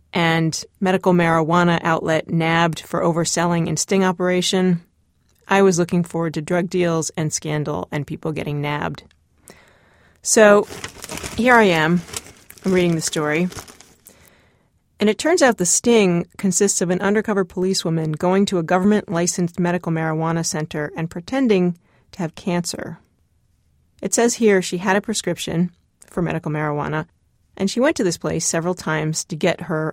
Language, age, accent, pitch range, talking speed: English, 30-49, American, 165-195 Hz, 150 wpm